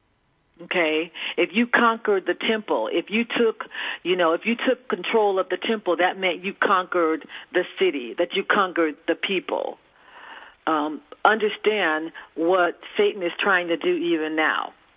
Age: 50-69